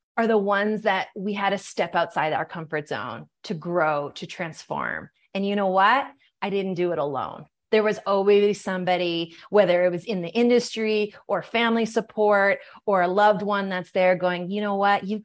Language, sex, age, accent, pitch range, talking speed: English, female, 30-49, American, 195-265 Hz, 195 wpm